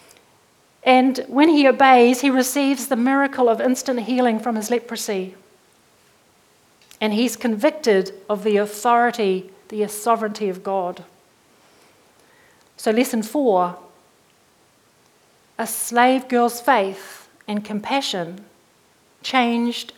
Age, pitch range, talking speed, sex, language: 40-59, 210-260 Hz, 100 wpm, female, English